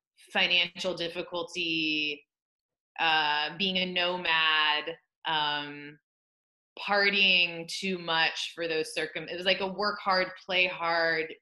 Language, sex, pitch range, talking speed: English, female, 160-190 Hz, 110 wpm